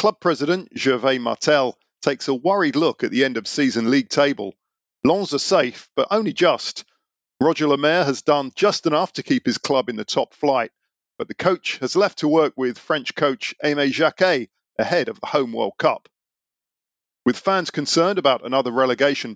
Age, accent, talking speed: 50-69, British, 175 wpm